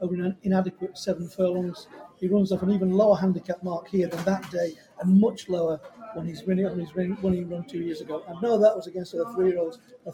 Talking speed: 230 wpm